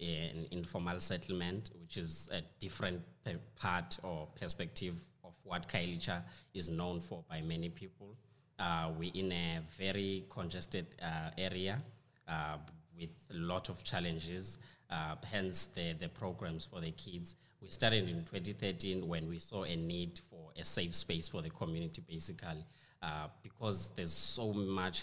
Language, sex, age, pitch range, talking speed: English, male, 30-49, 85-95 Hz, 150 wpm